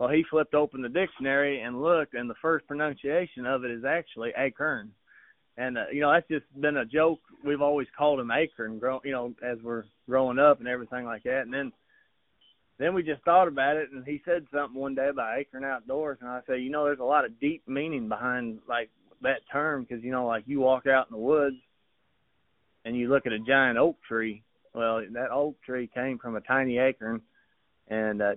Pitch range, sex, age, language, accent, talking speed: 120-145 Hz, male, 30-49, English, American, 215 wpm